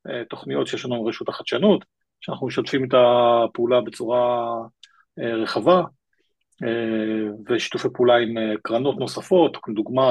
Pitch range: 115-155 Hz